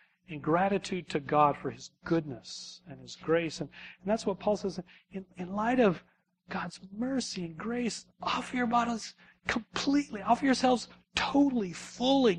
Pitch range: 150-185 Hz